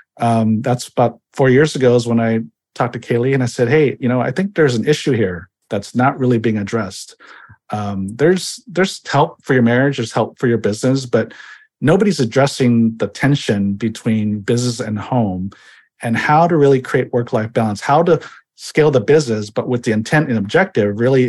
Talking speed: 195 wpm